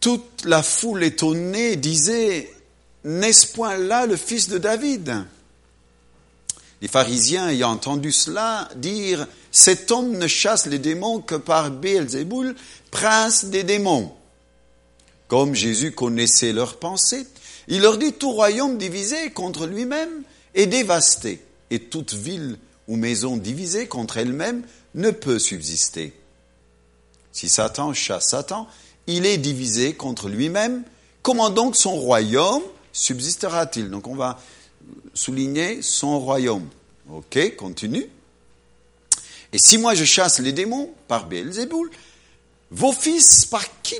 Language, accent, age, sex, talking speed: French, French, 50-69, male, 130 wpm